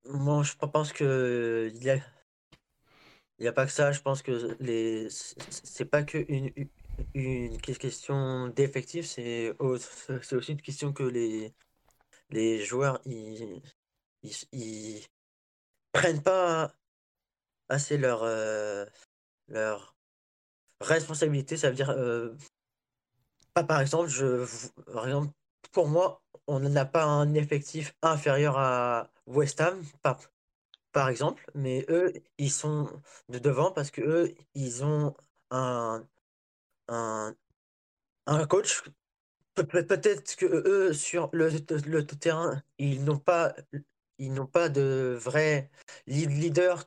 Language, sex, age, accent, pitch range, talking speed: French, male, 20-39, French, 125-155 Hz, 130 wpm